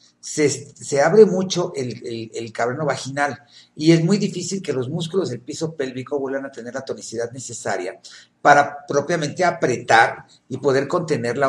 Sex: male